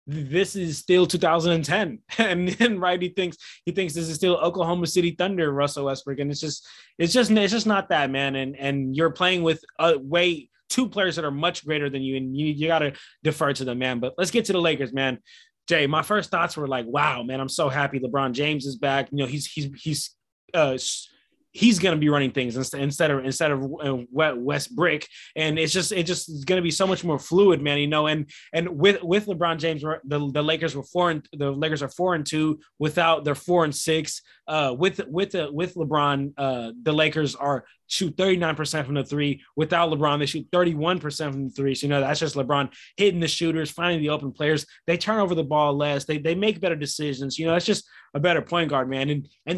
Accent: American